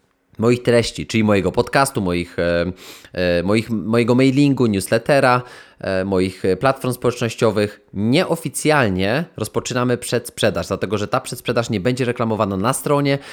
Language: Polish